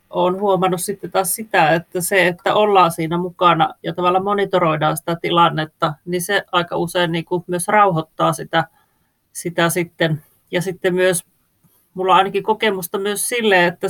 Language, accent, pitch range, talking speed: Finnish, native, 170-195 Hz, 155 wpm